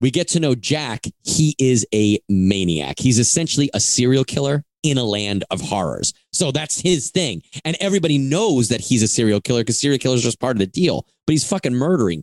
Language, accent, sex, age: English, American, male, 30-49